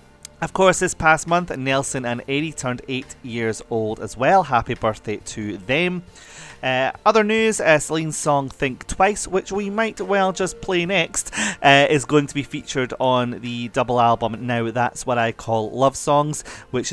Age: 30-49